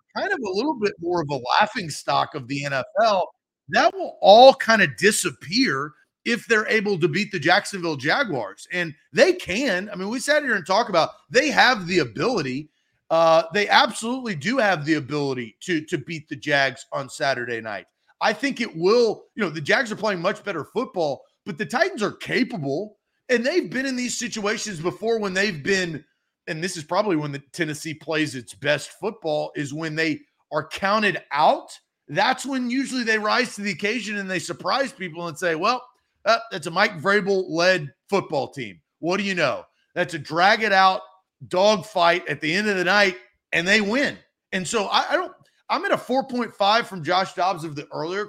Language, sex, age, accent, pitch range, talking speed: English, male, 30-49, American, 165-225 Hz, 200 wpm